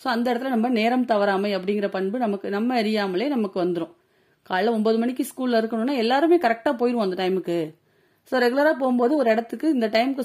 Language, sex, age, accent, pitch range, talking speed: Tamil, female, 30-49, native, 195-250 Hz, 175 wpm